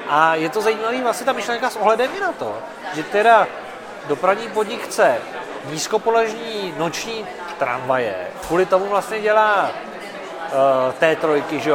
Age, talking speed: 40-59, 140 wpm